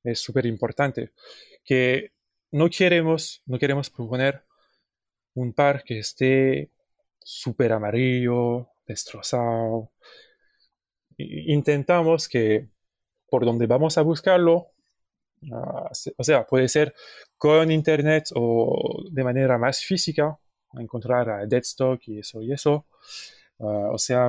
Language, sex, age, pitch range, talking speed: Spanish, male, 20-39, 115-150 Hz, 120 wpm